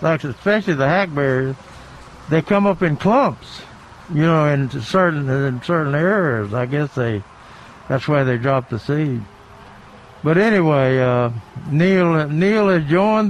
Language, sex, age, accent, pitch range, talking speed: English, male, 60-79, American, 130-175 Hz, 140 wpm